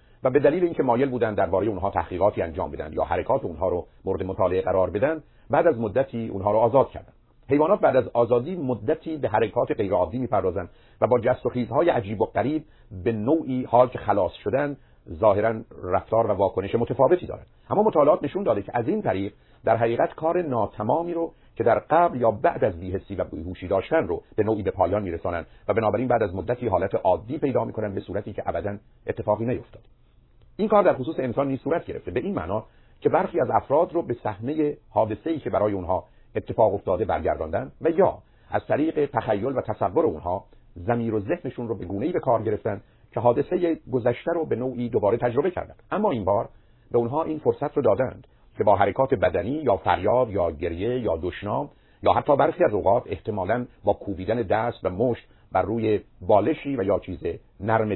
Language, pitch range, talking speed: Persian, 105-135 Hz, 195 wpm